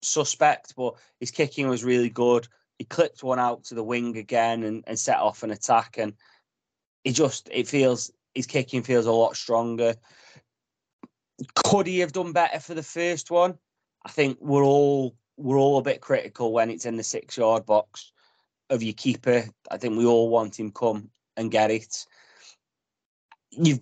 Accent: British